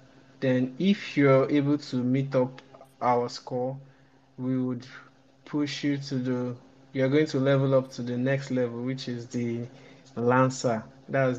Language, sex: English, male